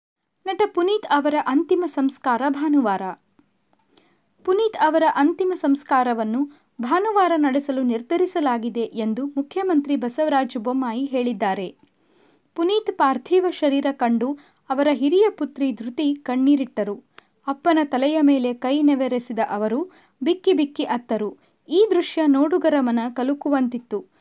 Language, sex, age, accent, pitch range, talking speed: Kannada, female, 30-49, native, 250-320 Hz, 100 wpm